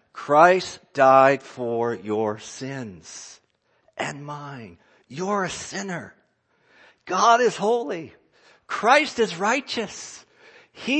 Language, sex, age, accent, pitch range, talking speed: English, male, 50-69, American, 145-240 Hz, 95 wpm